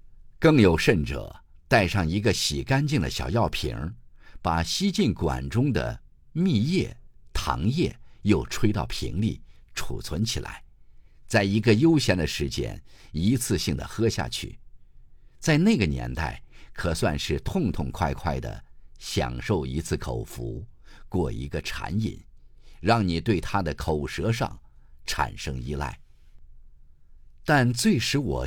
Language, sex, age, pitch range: Chinese, male, 50-69, 65-110 Hz